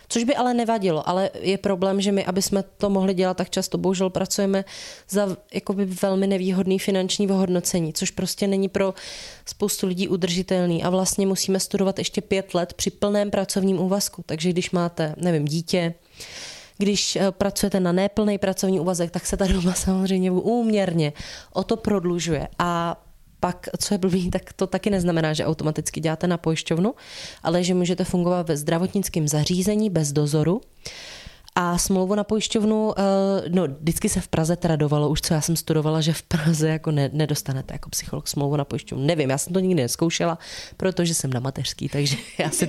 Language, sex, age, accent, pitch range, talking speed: Czech, female, 20-39, native, 165-195 Hz, 175 wpm